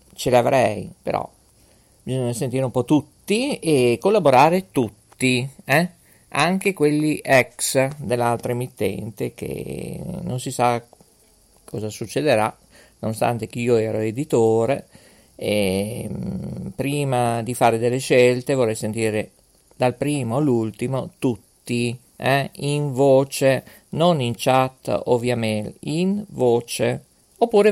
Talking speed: 115 wpm